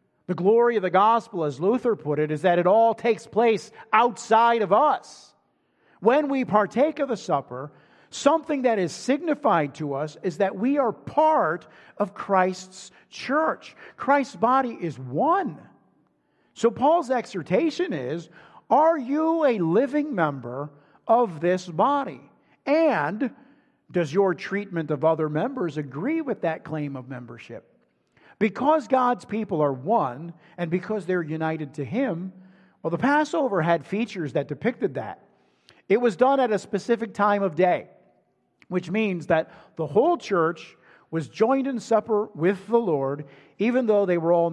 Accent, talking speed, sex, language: American, 150 wpm, male, English